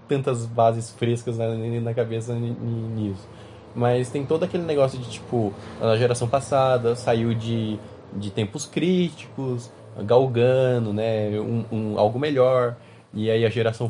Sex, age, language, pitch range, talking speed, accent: male, 20-39, Portuguese, 110-130 Hz, 130 wpm, Brazilian